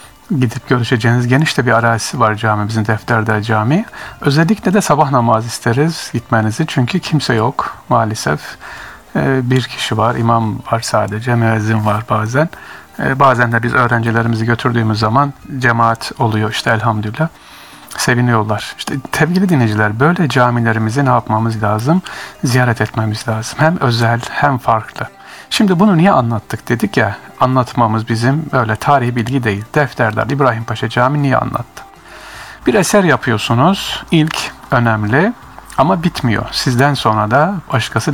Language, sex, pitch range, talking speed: Turkish, male, 110-145 Hz, 130 wpm